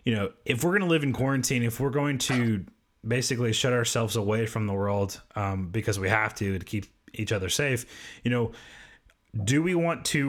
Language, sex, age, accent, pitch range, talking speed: English, male, 30-49, American, 95-120 Hz, 210 wpm